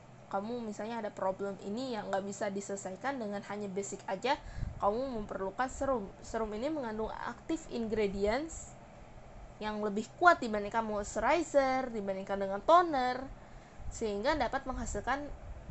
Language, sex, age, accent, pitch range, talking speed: Indonesian, female, 20-39, native, 210-270 Hz, 120 wpm